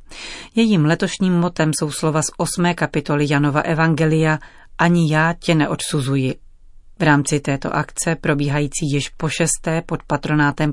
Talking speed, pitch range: 135 wpm, 145-170 Hz